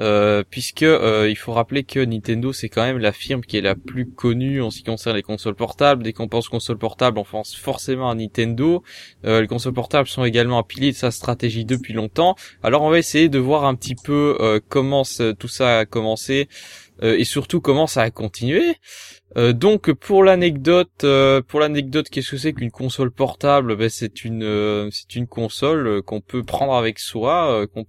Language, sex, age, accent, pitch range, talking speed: French, male, 20-39, French, 110-140 Hz, 205 wpm